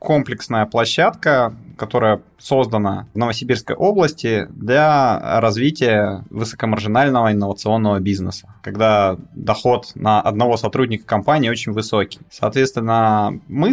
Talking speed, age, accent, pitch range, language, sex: 95 wpm, 20-39, native, 110-140 Hz, Russian, male